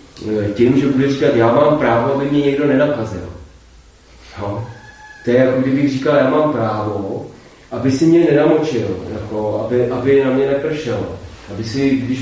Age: 30-49